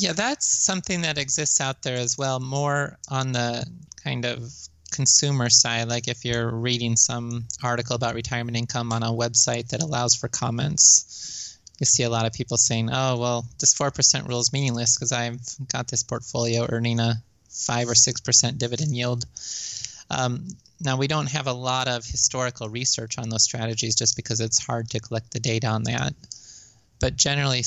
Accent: American